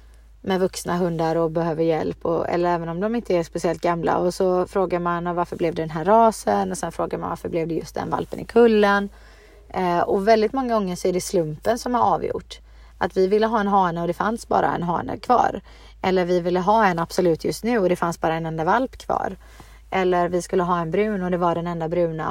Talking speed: 240 wpm